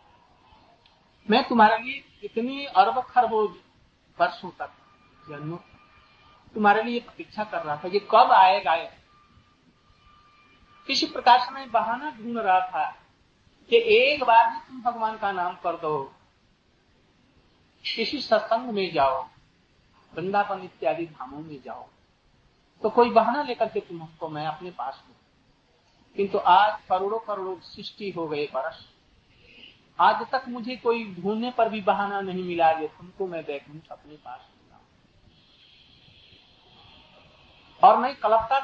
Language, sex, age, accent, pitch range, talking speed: Hindi, male, 50-69, native, 155-230 Hz, 125 wpm